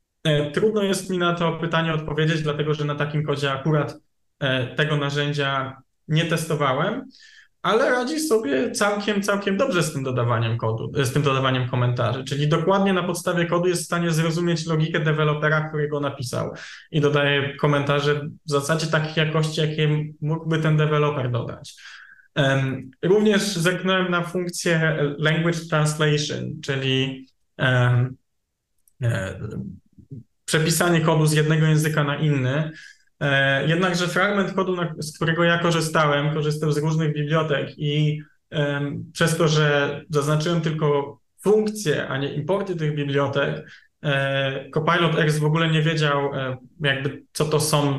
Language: Polish